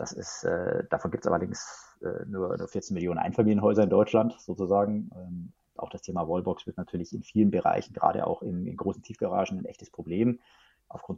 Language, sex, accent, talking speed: German, male, German, 195 wpm